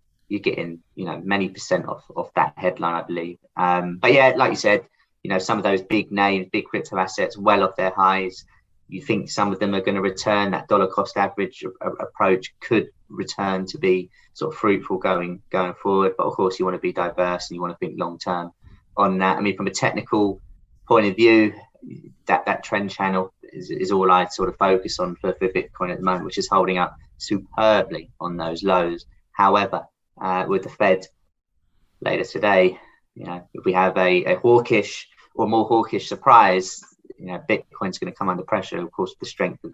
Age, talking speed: 20-39, 210 wpm